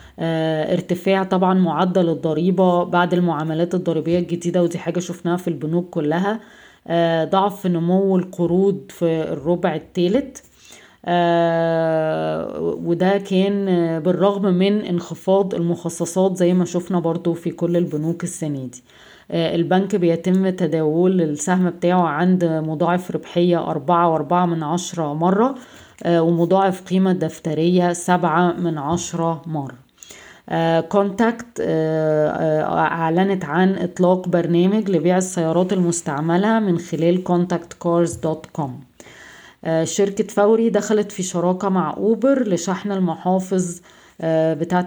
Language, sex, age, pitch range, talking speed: Arabic, female, 20-39, 165-190 Hz, 105 wpm